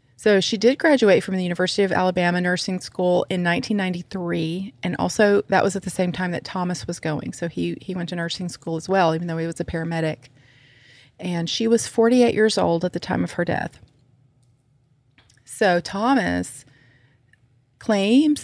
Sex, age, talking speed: female, 30-49, 180 wpm